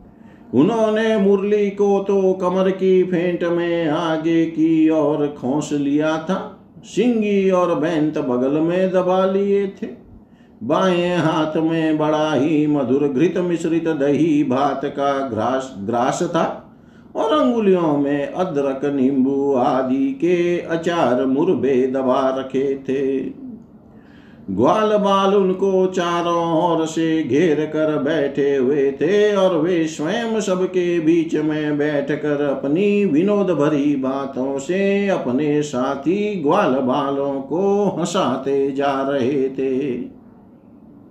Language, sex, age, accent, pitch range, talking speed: Hindi, male, 50-69, native, 140-190 Hz, 115 wpm